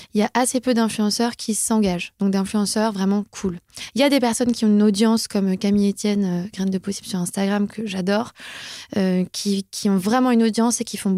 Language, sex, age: French, female, 20-39